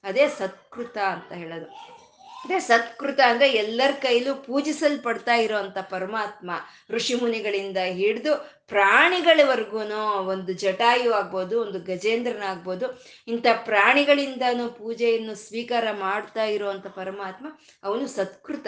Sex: female